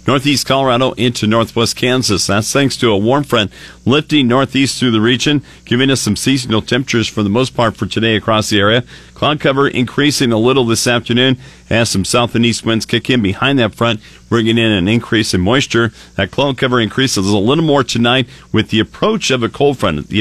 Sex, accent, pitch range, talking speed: male, American, 105-130 Hz, 210 wpm